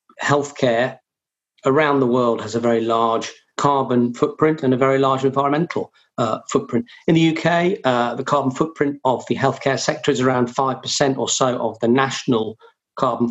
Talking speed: 165 wpm